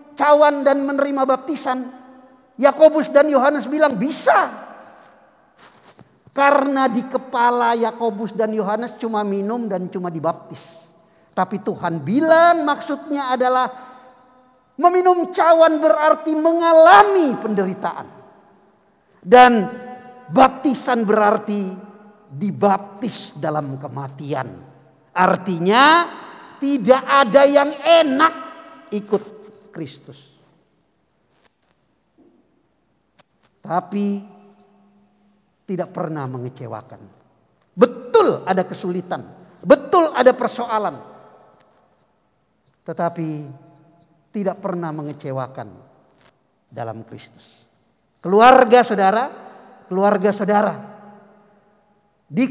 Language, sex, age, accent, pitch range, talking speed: Indonesian, male, 50-69, native, 185-285 Hz, 75 wpm